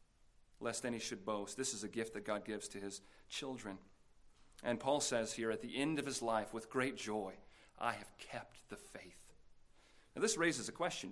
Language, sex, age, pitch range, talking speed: English, male, 40-59, 115-145 Hz, 200 wpm